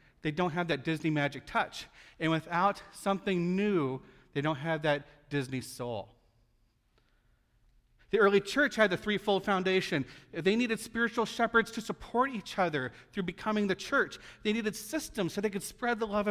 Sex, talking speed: male, 165 wpm